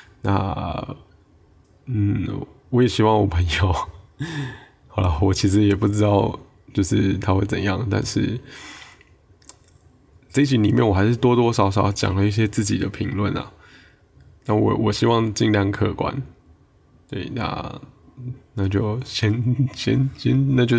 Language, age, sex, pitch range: Chinese, 20-39, male, 100-120 Hz